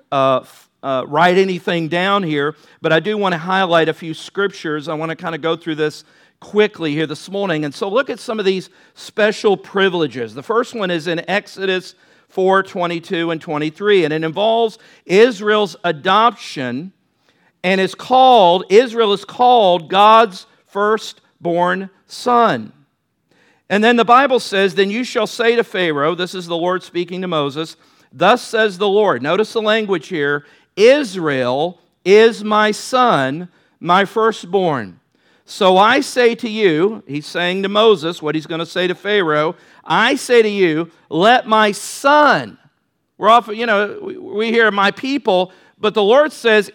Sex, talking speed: male, 160 wpm